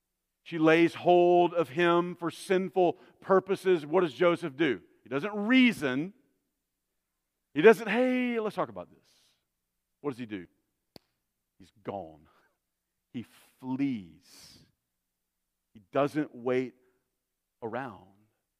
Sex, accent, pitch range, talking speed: male, American, 125-200 Hz, 110 wpm